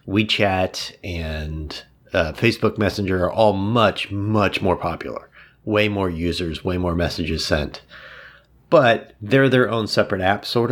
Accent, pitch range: American, 85-105 Hz